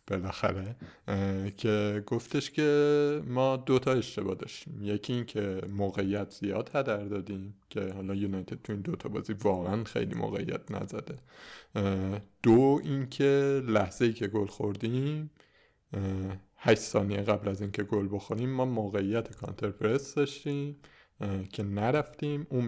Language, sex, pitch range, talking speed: Persian, male, 100-120 Hz, 130 wpm